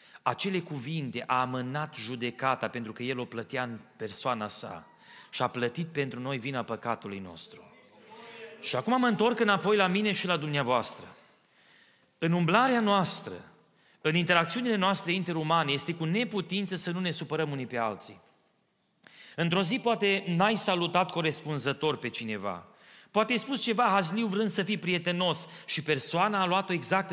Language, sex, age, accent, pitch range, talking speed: Romanian, male, 30-49, native, 145-200 Hz, 155 wpm